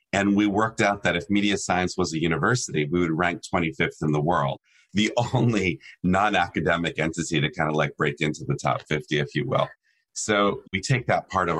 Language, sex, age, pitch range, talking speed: English, male, 30-49, 75-100 Hz, 205 wpm